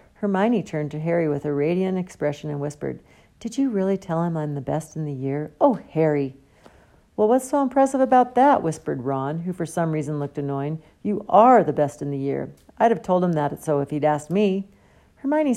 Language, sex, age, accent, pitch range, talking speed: English, female, 50-69, American, 145-200 Hz, 210 wpm